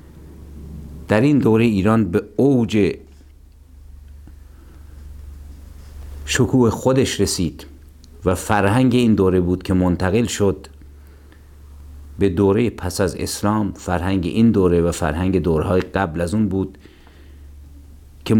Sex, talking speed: male, 110 wpm